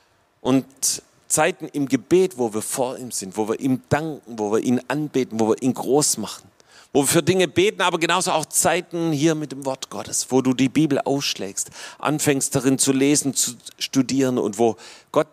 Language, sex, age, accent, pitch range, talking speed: German, male, 40-59, German, 115-140 Hz, 195 wpm